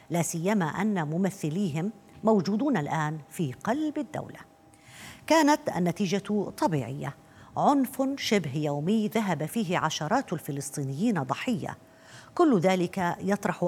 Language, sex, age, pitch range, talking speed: Arabic, female, 50-69, 150-215 Hz, 100 wpm